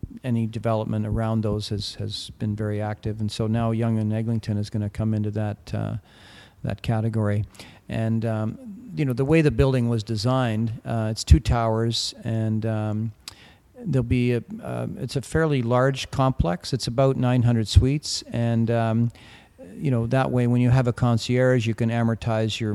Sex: male